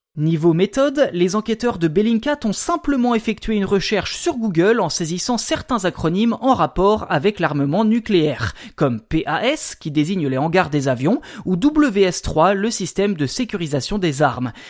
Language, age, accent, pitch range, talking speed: French, 20-39, French, 160-225 Hz, 155 wpm